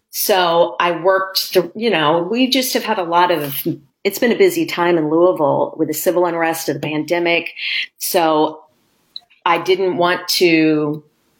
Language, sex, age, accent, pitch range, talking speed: English, female, 40-59, American, 155-180 Hz, 165 wpm